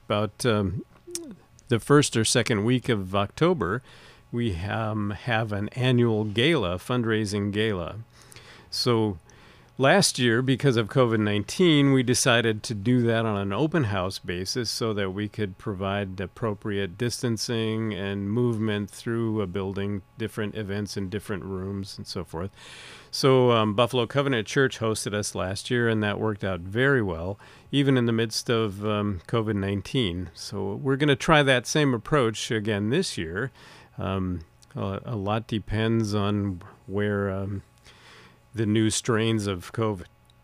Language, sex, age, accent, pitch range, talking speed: English, male, 50-69, American, 100-125 Hz, 145 wpm